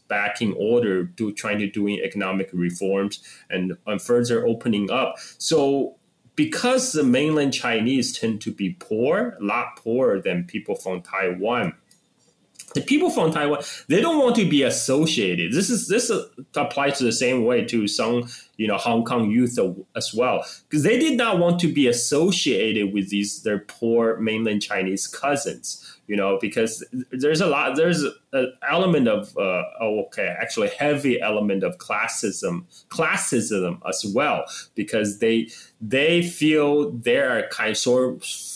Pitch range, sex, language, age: 100-155 Hz, male, English, 20-39